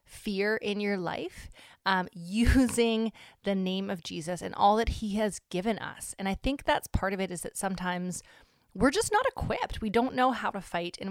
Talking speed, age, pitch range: 205 wpm, 30-49, 175-215 Hz